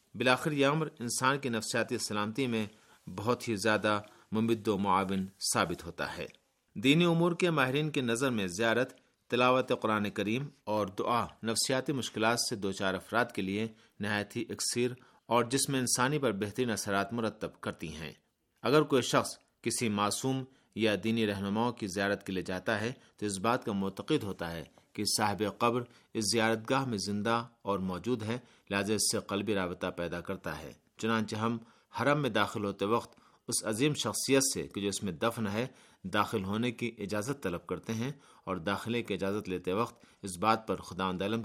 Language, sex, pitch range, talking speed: Urdu, male, 100-125 Hz, 180 wpm